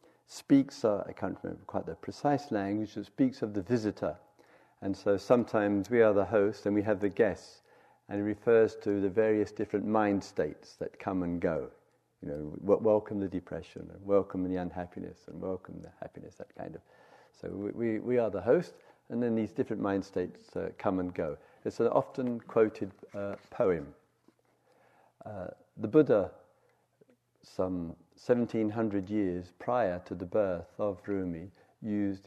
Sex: male